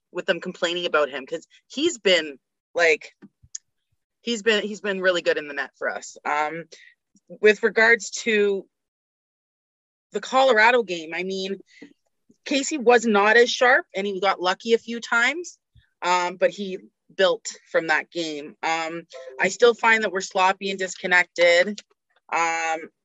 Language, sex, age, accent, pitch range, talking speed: English, female, 30-49, American, 165-225 Hz, 150 wpm